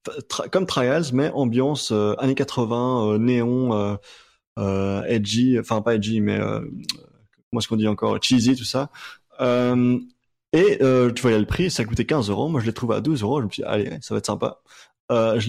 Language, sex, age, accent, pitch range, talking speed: French, male, 20-39, French, 105-130 Hz, 215 wpm